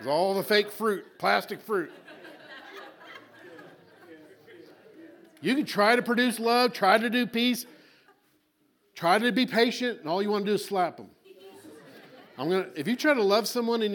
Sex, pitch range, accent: male, 155-210 Hz, American